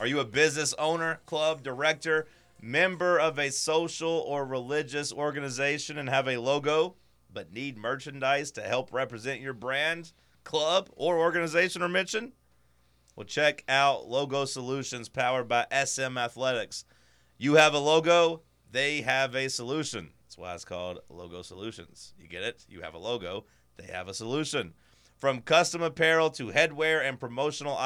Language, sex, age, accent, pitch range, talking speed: English, male, 30-49, American, 100-145 Hz, 155 wpm